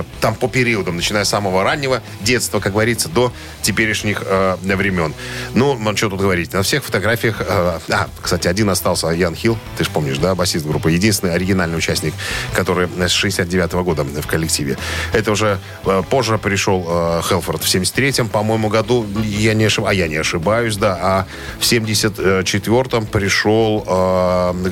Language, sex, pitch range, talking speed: Russian, male, 90-115 Hz, 170 wpm